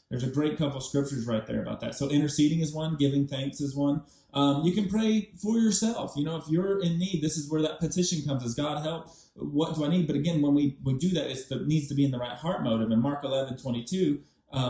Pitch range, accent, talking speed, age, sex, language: 130-155 Hz, American, 265 wpm, 30-49, male, English